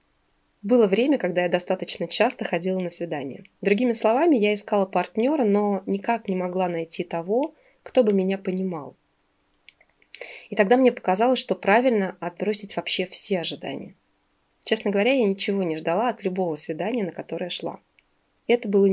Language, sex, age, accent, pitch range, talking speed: Russian, female, 20-39, native, 180-225 Hz, 150 wpm